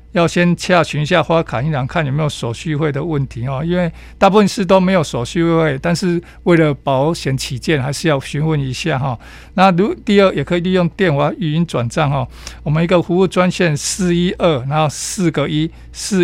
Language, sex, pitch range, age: Chinese, male, 145-180 Hz, 50-69